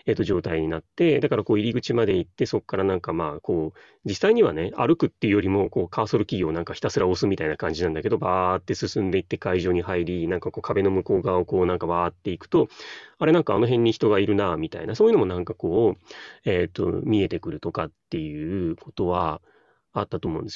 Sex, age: male, 30-49